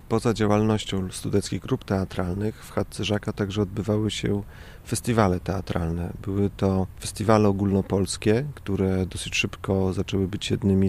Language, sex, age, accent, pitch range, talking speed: Polish, male, 40-59, native, 95-110 Hz, 120 wpm